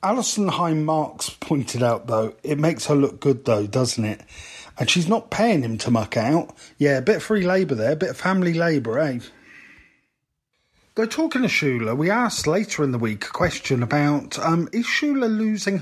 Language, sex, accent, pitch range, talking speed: English, male, British, 120-170 Hz, 195 wpm